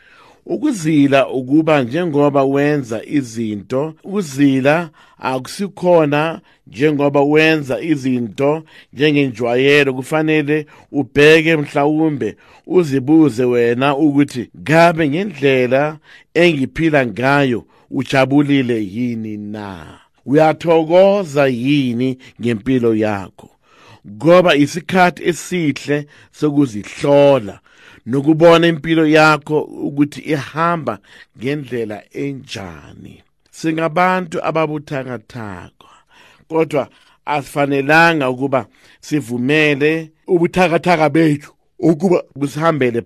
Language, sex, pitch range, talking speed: English, male, 130-160 Hz, 70 wpm